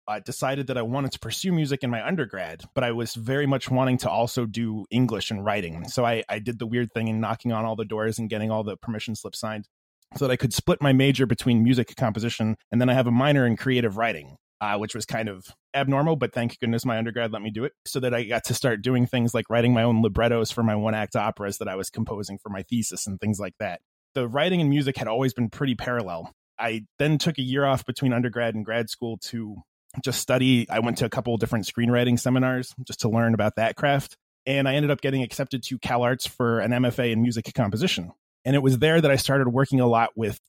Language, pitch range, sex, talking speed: English, 110-130 Hz, male, 250 wpm